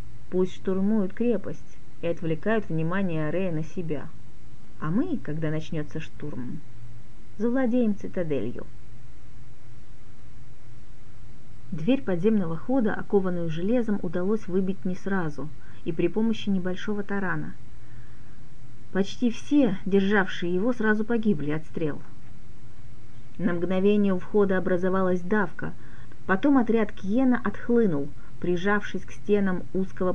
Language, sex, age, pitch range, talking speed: Russian, female, 30-49, 125-200 Hz, 105 wpm